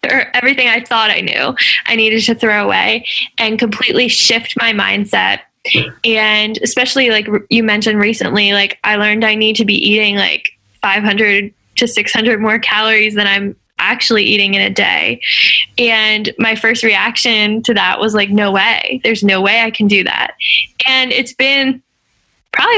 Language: English